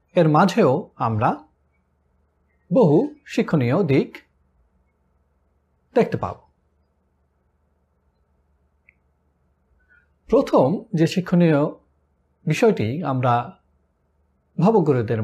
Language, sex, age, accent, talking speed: Bengali, male, 50-69, native, 55 wpm